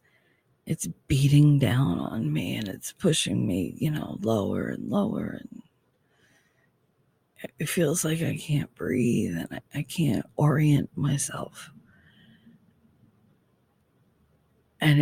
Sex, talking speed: female, 110 wpm